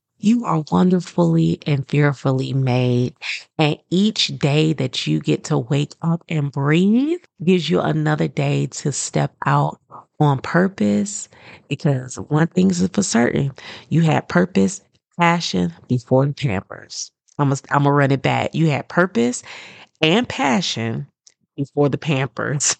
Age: 30-49